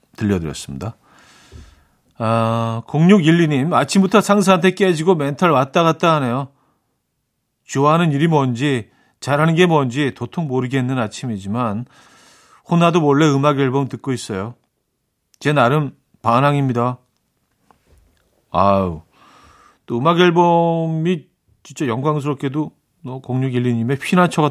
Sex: male